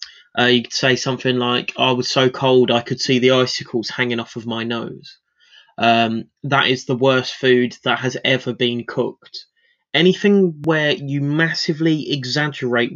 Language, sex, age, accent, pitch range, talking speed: English, male, 20-39, British, 130-165 Hz, 165 wpm